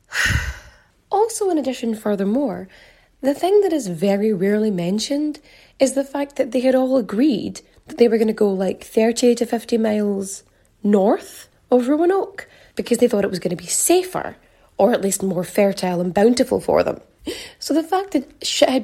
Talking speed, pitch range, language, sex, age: 180 wpm, 210-295 Hz, English, female, 20-39